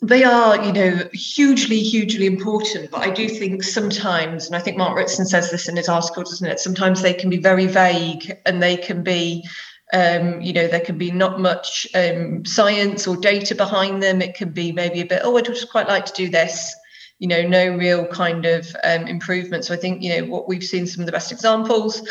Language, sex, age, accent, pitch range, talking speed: English, female, 30-49, British, 170-190 Hz, 225 wpm